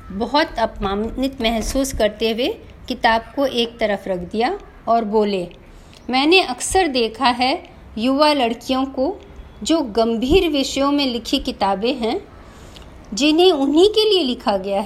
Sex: female